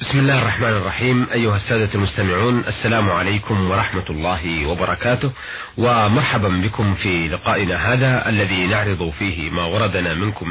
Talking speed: 130 wpm